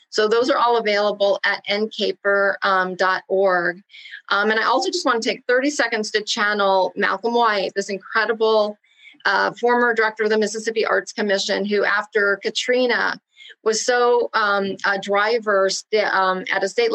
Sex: female